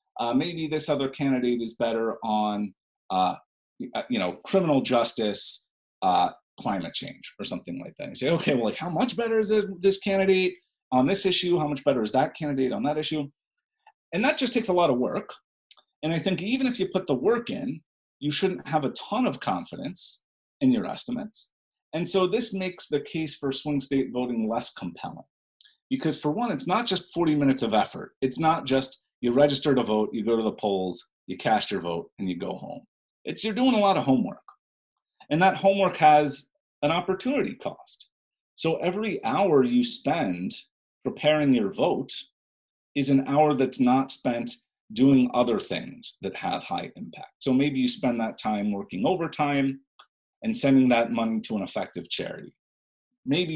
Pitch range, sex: 130-195 Hz, male